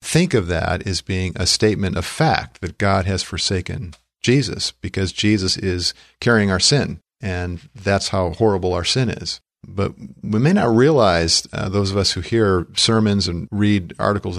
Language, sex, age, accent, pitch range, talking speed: English, male, 50-69, American, 95-115 Hz, 175 wpm